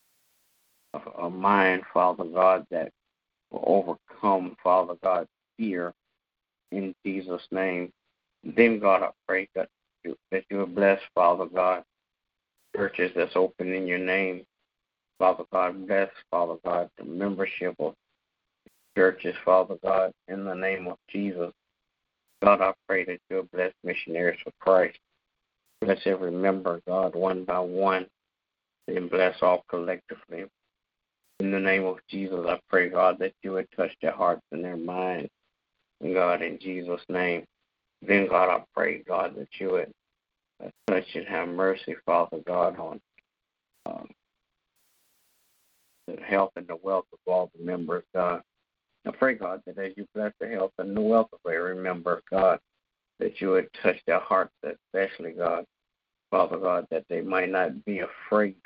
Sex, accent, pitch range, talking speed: male, American, 90-95 Hz, 150 wpm